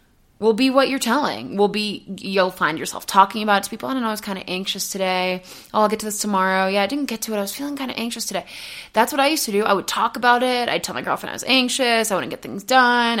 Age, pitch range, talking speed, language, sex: 20-39, 195-255 Hz, 300 wpm, English, female